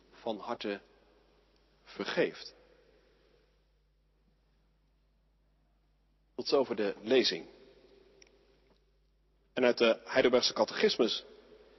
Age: 50-69